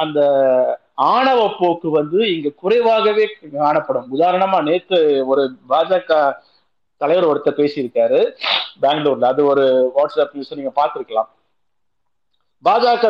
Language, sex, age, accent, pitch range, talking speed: Tamil, male, 50-69, native, 145-225 Hz, 90 wpm